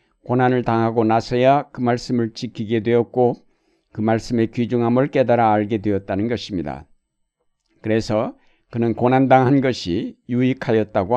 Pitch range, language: 115-135 Hz, Korean